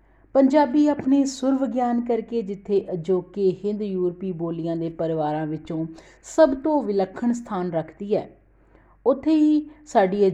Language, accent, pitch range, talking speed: English, Indian, 165-230 Hz, 115 wpm